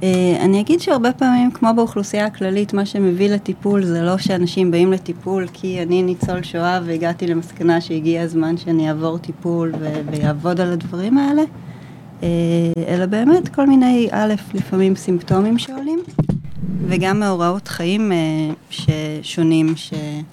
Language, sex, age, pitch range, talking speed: Hebrew, female, 20-39, 160-190 Hz, 140 wpm